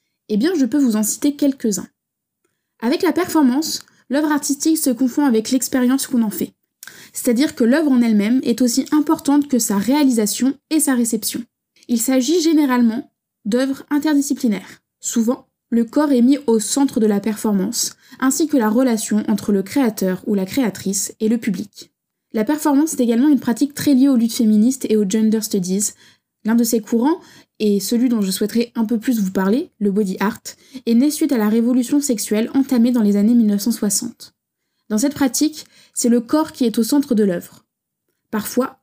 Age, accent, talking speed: 20-39, French, 185 wpm